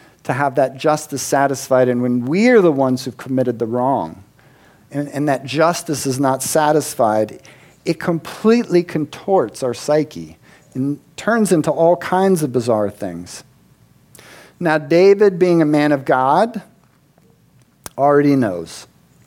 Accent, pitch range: American, 125-170 Hz